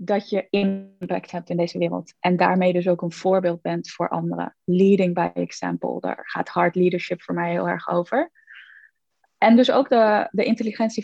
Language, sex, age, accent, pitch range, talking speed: Dutch, female, 20-39, Dutch, 180-230 Hz, 185 wpm